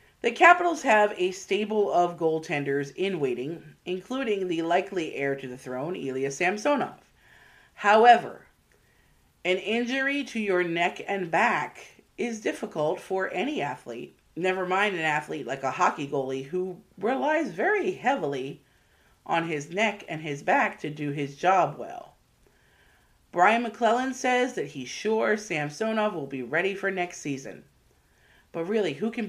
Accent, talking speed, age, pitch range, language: American, 145 wpm, 30-49, 155-225 Hz, English